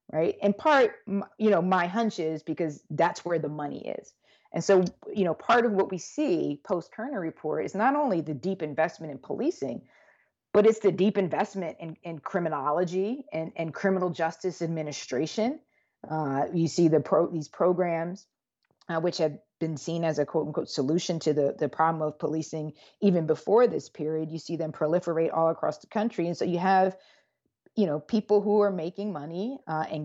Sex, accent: female, American